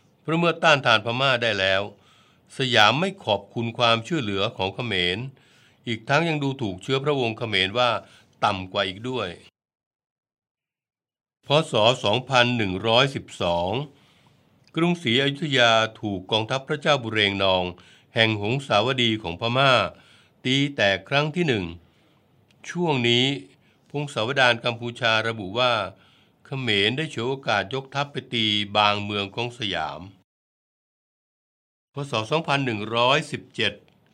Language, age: Thai, 60-79